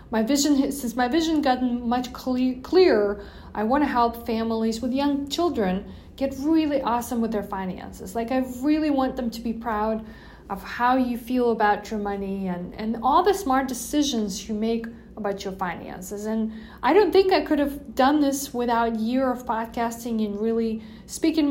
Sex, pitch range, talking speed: female, 215-265 Hz, 180 wpm